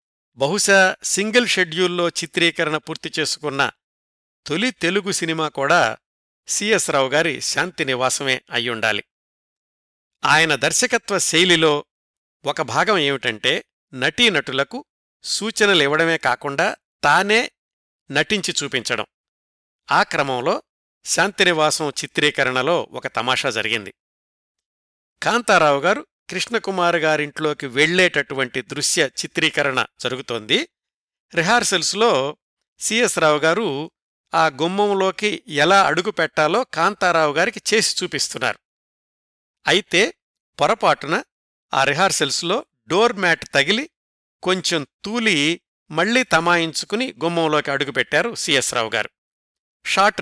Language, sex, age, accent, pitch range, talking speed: Telugu, male, 50-69, native, 140-190 Hz, 80 wpm